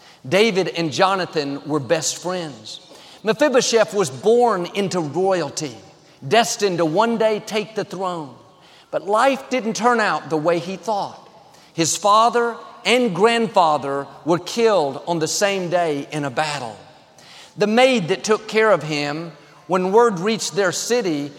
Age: 50-69